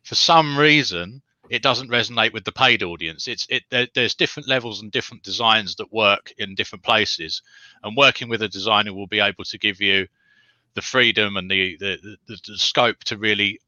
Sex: male